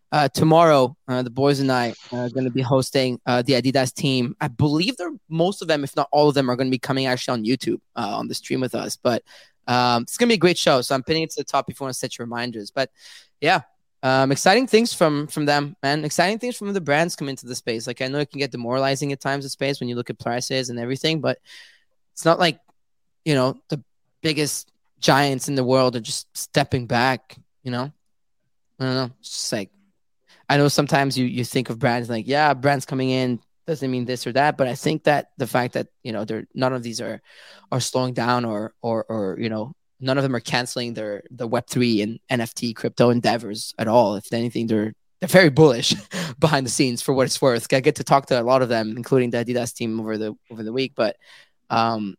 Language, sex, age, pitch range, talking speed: English, male, 20-39, 120-145 Hz, 245 wpm